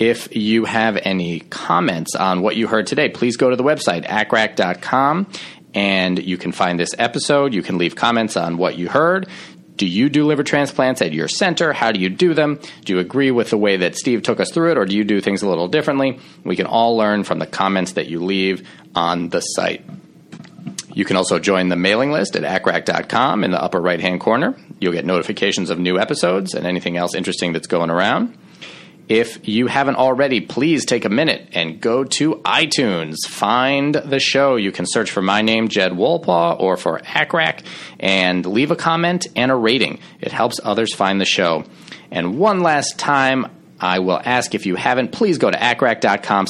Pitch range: 95-135 Hz